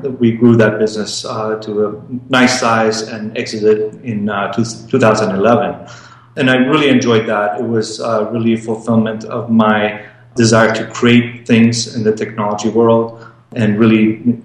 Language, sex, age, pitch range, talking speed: English, male, 30-49, 110-120 Hz, 155 wpm